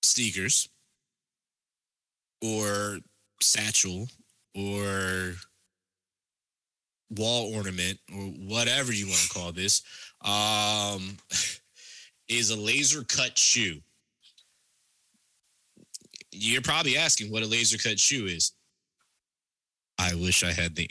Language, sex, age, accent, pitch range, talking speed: Finnish, male, 20-39, American, 95-120 Hz, 95 wpm